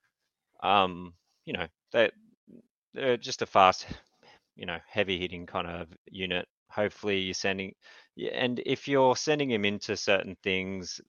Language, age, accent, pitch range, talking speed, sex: English, 30-49, Australian, 90-115 Hz, 135 wpm, male